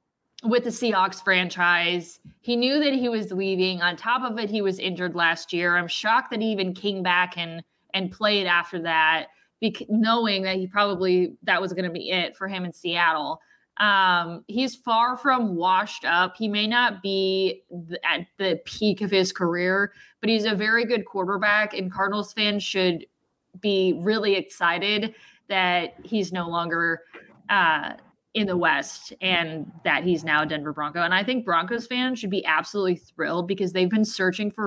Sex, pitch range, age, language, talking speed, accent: female, 180-225 Hz, 20-39, English, 180 wpm, American